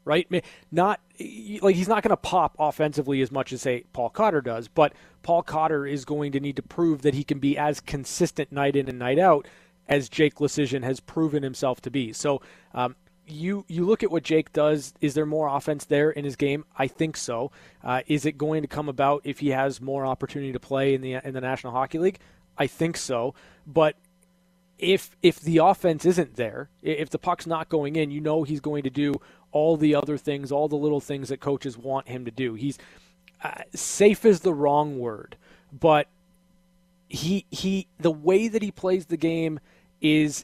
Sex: male